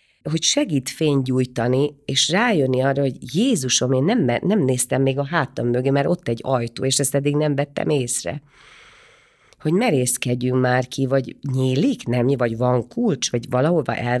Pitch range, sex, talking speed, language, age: 120-155 Hz, female, 165 wpm, Hungarian, 40-59